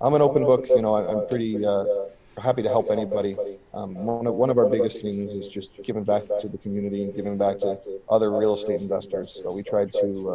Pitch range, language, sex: 100-120 Hz, English, male